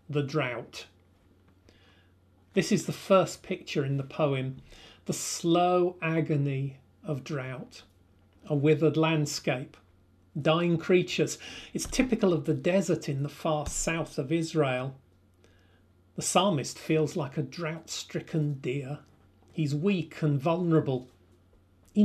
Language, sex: English, male